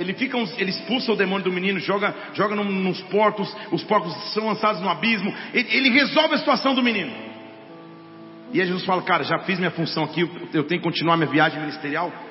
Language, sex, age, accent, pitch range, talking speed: Portuguese, male, 40-59, Brazilian, 140-210 Hz, 205 wpm